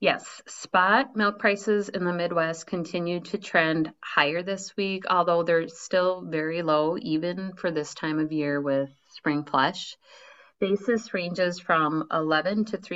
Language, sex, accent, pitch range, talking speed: English, female, American, 155-185 Hz, 150 wpm